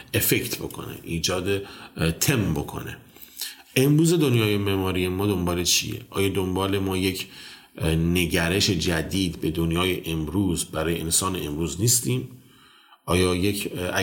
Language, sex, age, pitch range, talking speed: Persian, male, 40-59, 85-95 Hz, 110 wpm